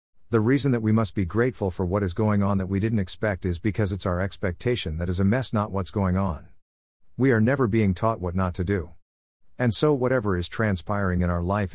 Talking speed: 235 wpm